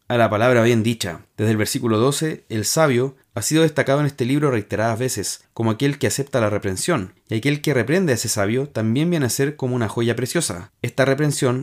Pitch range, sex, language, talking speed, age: 110-140 Hz, male, Spanish, 215 wpm, 30-49